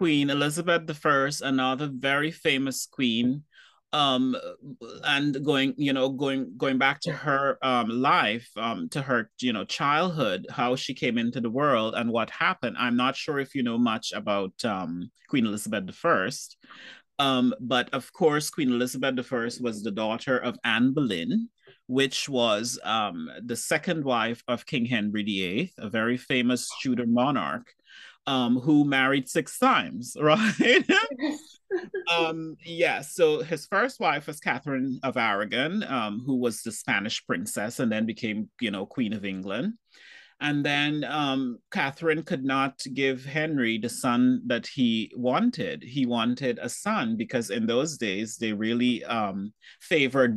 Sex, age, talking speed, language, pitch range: male, 30-49, 155 wpm, English, 120-160 Hz